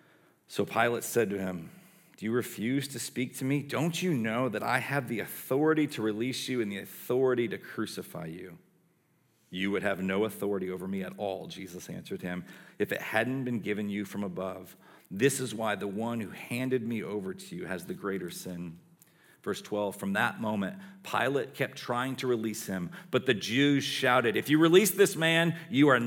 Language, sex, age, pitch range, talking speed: English, male, 40-59, 105-145 Hz, 200 wpm